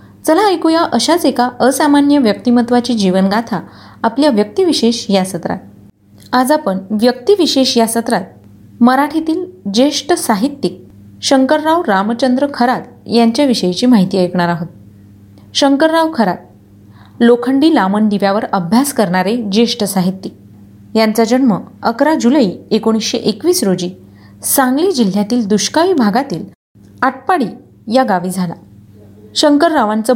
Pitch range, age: 185-265 Hz, 30-49